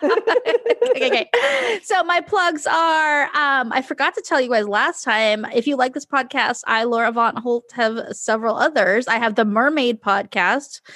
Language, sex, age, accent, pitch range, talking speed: English, female, 20-39, American, 225-310 Hz, 175 wpm